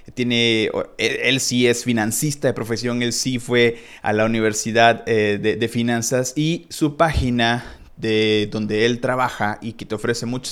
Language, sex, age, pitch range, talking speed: Spanish, male, 30-49, 110-130 Hz, 170 wpm